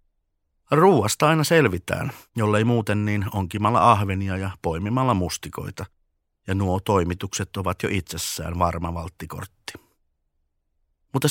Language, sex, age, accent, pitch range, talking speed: Finnish, male, 50-69, native, 85-110 Hz, 105 wpm